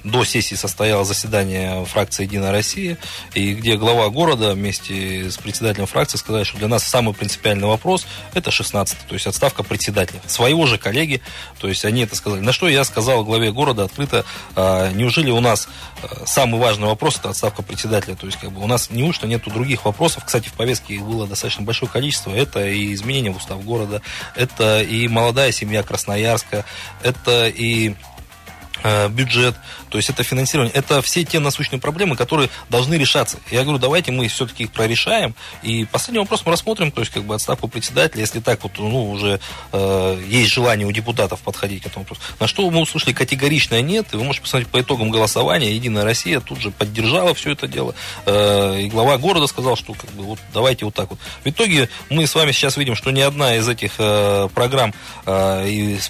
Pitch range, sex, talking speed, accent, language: 100-130 Hz, male, 190 wpm, native, Russian